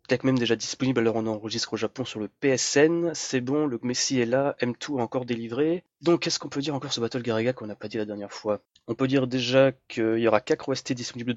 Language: French